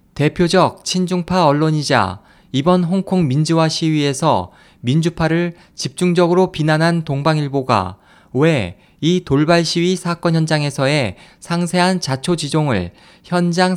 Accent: native